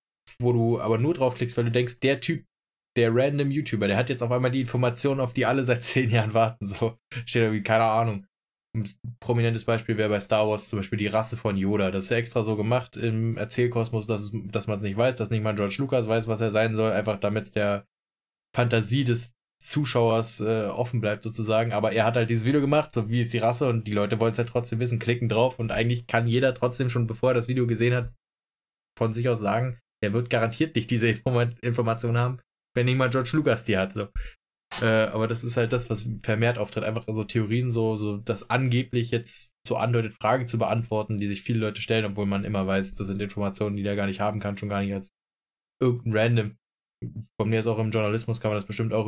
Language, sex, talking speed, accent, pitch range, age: German, male, 235 wpm, German, 110-120 Hz, 20-39